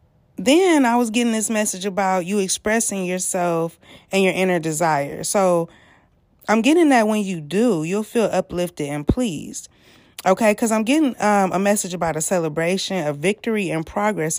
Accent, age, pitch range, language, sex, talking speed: American, 20-39, 175-225 Hz, English, female, 165 wpm